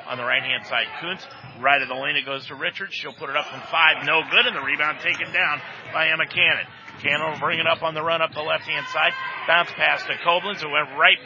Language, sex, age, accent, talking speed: English, male, 50-69, American, 255 wpm